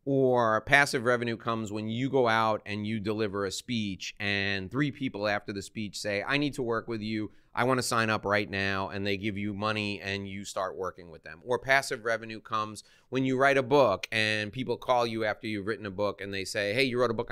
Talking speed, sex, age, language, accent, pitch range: 240 wpm, male, 30-49, English, American, 105-130 Hz